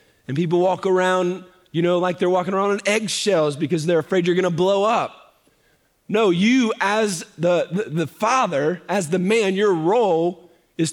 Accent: American